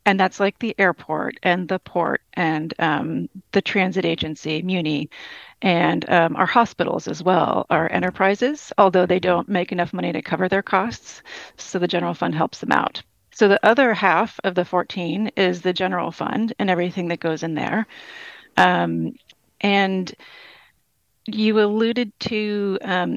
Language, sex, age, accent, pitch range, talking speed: English, female, 40-59, American, 175-205 Hz, 160 wpm